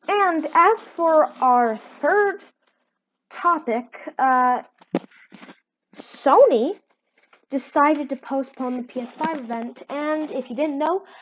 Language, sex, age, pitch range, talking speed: English, female, 20-39, 230-295 Hz, 100 wpm